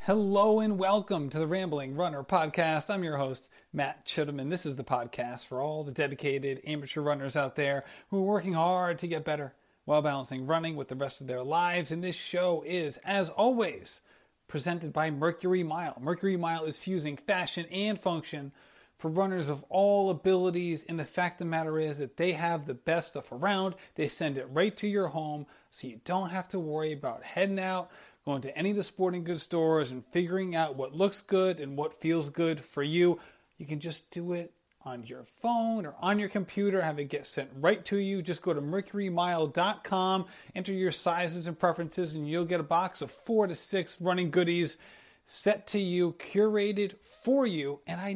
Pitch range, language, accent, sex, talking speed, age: 150-190 Hz, English, American, male, 200 wpm, 30-49